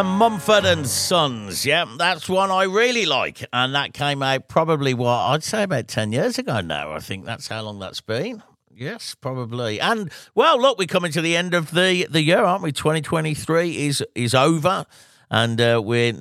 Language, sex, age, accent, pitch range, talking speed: English, male, 50-69, British, 110-165 Hz, 190 wpm